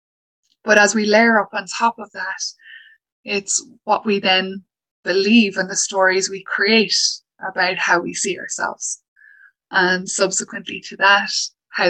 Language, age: English, 20-39